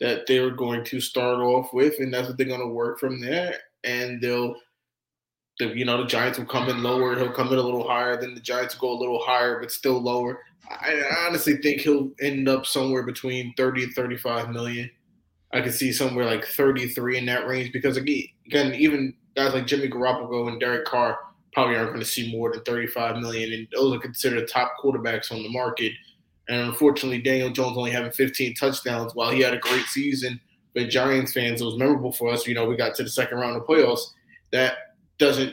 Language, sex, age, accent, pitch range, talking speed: English, male, 20-39, American, 120-135 Hz, 220 wpm